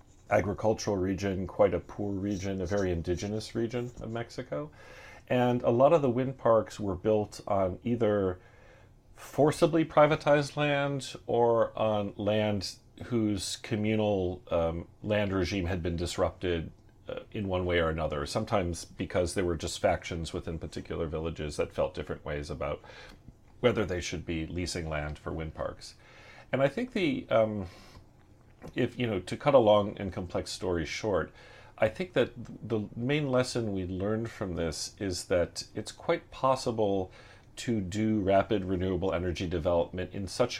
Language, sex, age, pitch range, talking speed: English, male, 40-59, 90-115 Hz, 155 wpm